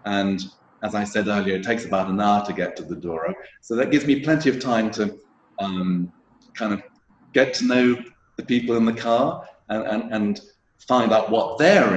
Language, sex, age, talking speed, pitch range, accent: English, male, 40-59, 205 wpm, 95-125 Hz, British